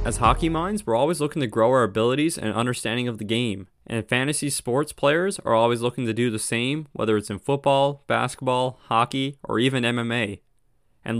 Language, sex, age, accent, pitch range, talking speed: English, male, 20-39, American, 115-145 Hz, 195 wpm